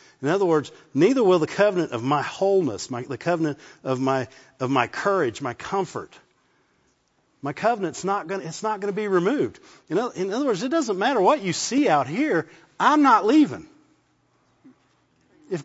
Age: 50-69